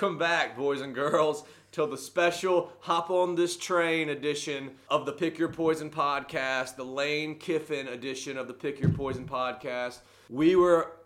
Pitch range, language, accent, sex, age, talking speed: 130-155 Hz, English, American, male, 30-49, 170 wpm